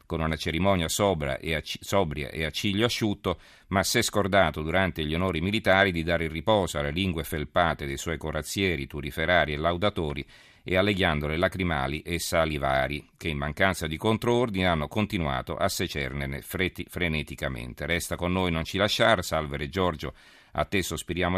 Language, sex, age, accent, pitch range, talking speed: Italian, male, 40-59, native, 80-95 Hz, 165 wpm